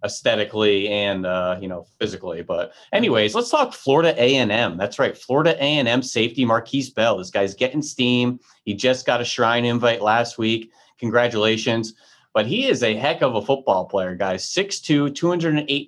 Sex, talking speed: male, 165 wpm